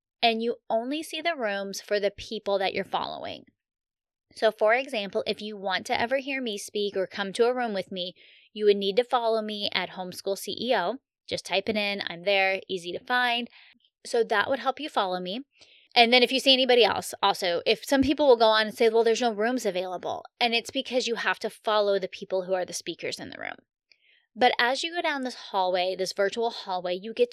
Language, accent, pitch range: English, American, 195-245 Hz